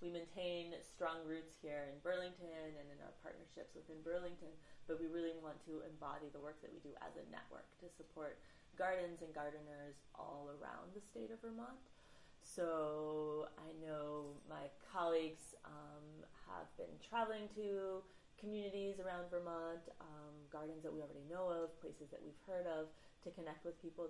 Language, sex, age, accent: English, female, 30-49, American